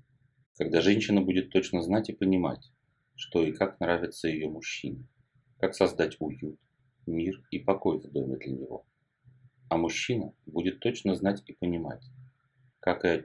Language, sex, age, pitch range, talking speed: Russian, male, 30-49, 90-130 Hz, 150 wpm